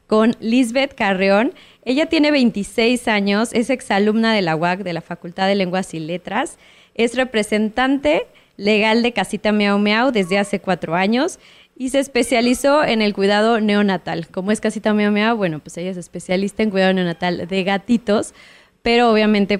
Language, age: Spanish, 20-39